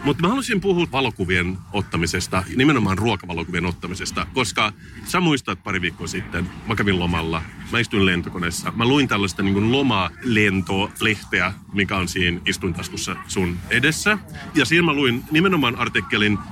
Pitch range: 95-135 Hz